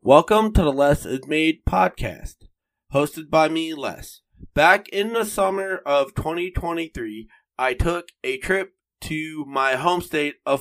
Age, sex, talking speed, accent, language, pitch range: 30-49, male, 145 wpm, American, English, 135-170 Hz